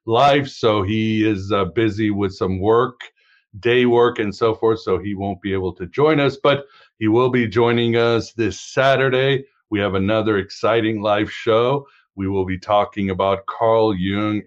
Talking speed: 180 wpm